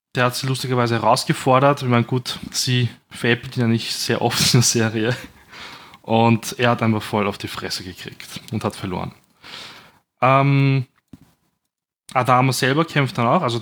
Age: 20-39